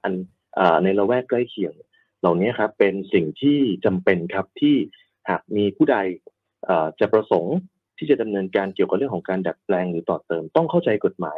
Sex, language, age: male, Thai, 30-49